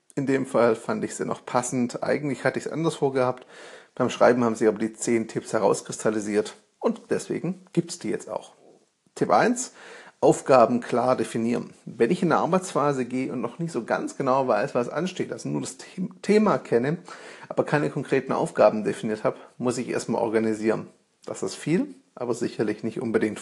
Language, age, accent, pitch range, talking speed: German, 40-59, German, 120-170 Hz, 185 wpm